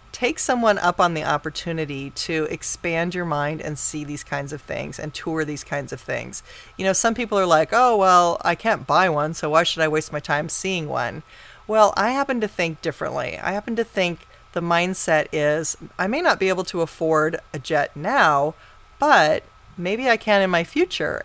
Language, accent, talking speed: English, American, 205 wpm